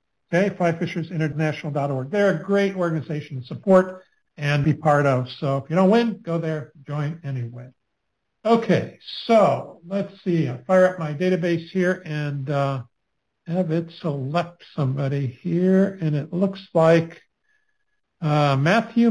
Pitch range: 150-190 Hz